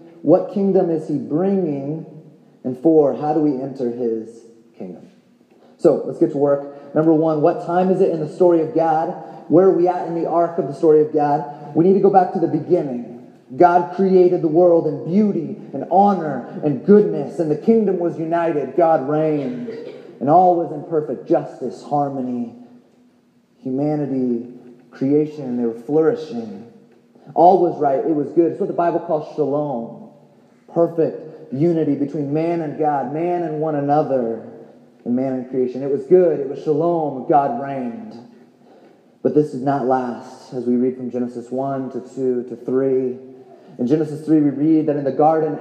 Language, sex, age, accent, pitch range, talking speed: English, male, 30-49, American, 135-170 Hz, 180 wpm